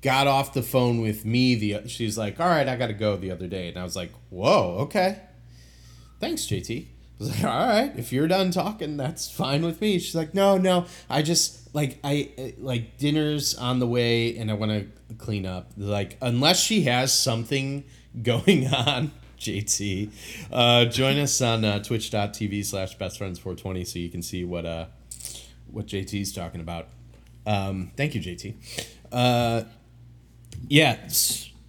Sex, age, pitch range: male, 30-49, 95-125 Hz